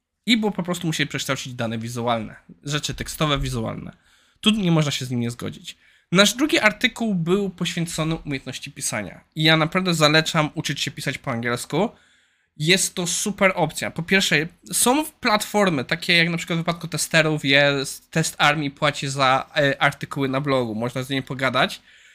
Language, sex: Polish, male